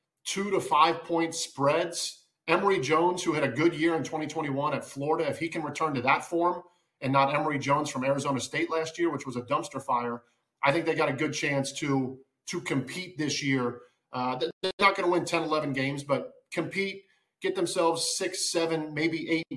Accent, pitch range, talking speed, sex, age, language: American, 135-165 Hz, 200 wpm, male, 40-59, English